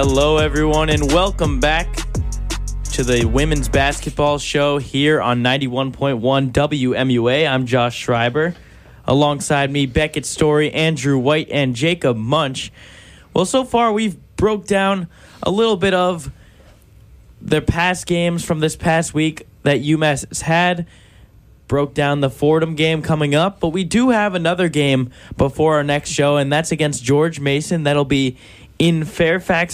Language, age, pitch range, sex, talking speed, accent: English, 20-39, 130-170 Hz, male, 145 wpm, American